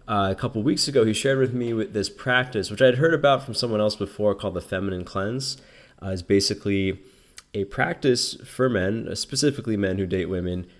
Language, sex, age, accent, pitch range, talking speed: English, male, 20-39, American, 90-110 Hz, 200 wpm